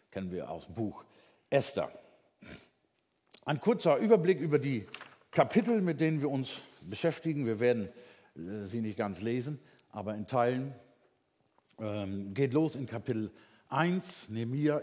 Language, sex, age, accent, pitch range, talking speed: German, male, 50-69, German, 120-160 Hz, 130 wpm